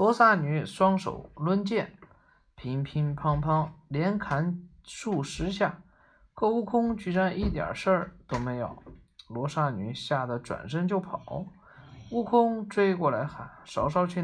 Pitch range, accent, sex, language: 150-205 Hz, native, male, Chinese